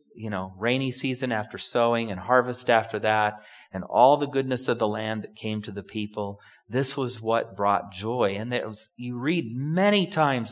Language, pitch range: English, 110-150 Hz